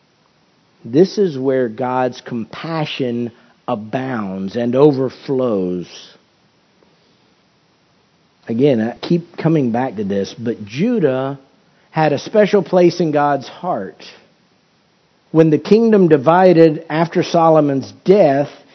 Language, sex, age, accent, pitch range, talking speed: English, male, 50-69, American, 135-185 Hz, 100 wpm